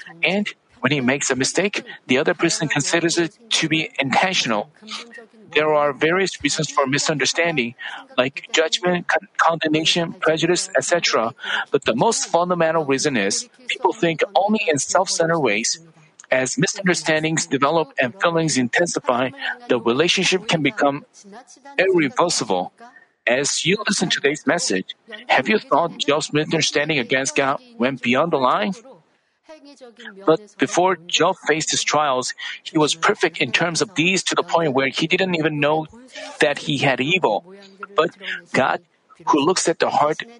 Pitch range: 150-190 Hz